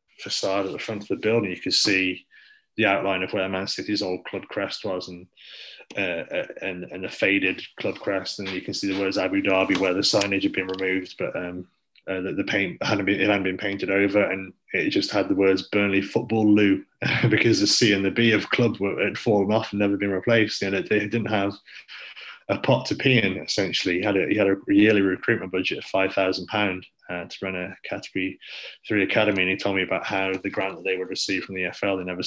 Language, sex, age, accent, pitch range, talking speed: English, male, 20-39, British, 95-105 Hz, 235 wpm